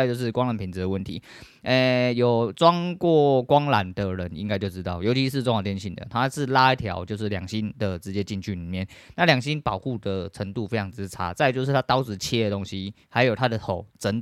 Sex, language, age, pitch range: male, Chinese, 20-39, 100-125 Hz